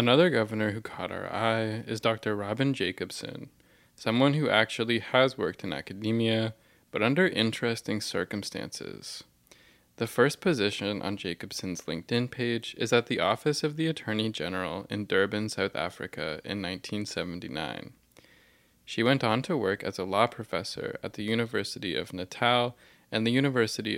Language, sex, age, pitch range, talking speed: English, male, 20-39, 100-120 Hz, 150 wpm